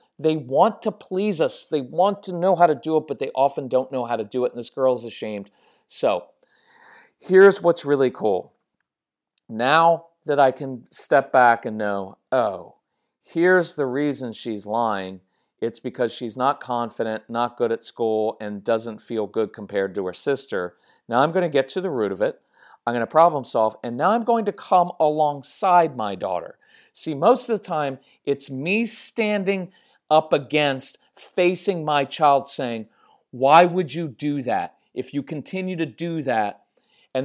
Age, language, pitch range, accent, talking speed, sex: 40-59, English, 120-165 Hz, American, 180 wpm, male